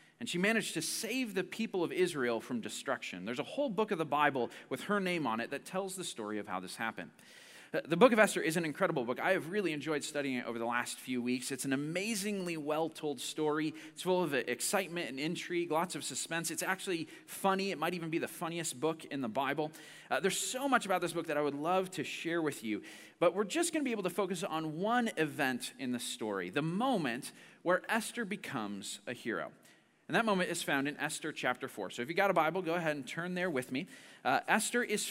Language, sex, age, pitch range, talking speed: English, male, 30-49, 145-200 Hz, 240 wpm